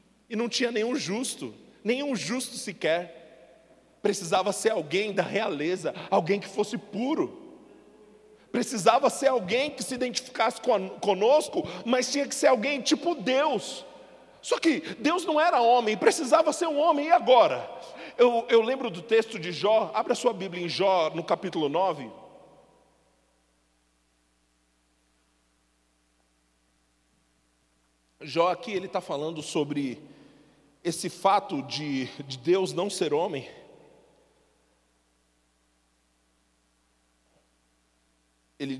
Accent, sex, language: Brazilian, male, Portuguese